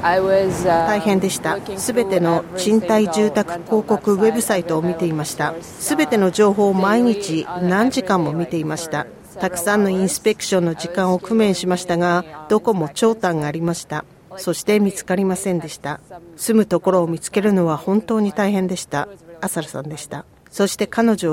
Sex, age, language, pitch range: female, 40-59, Japanese, 170-215 Hz